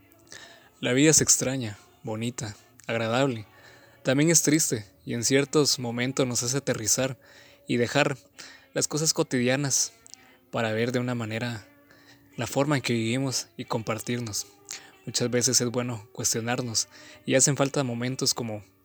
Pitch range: 120-135 Hz